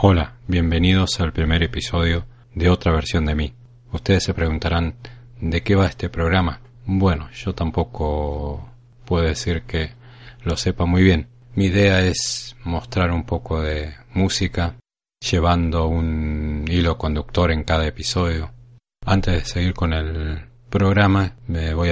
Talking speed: 140 wpm